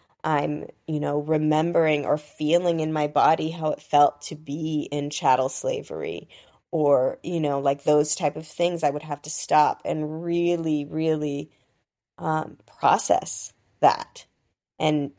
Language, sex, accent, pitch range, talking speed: English, female, American, 150-170 Hz, 145 wpm